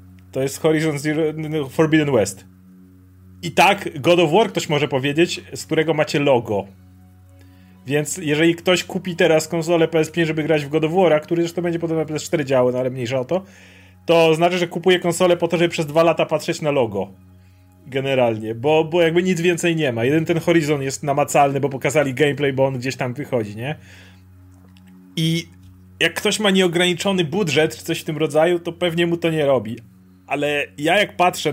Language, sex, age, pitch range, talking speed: Polish, male, 30-49, 125-170 Hz, 190 wpm